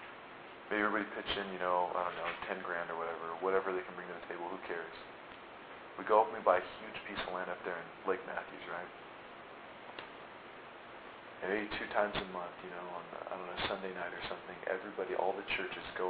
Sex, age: male, 40-59